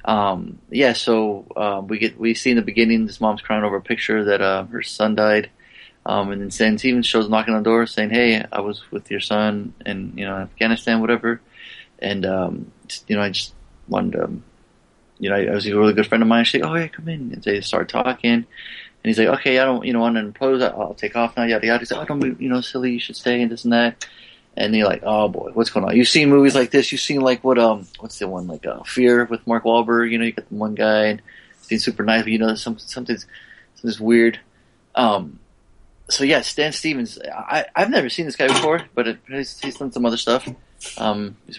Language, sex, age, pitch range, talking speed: English, male, 20-39, 105-120 Hz, 250 wpm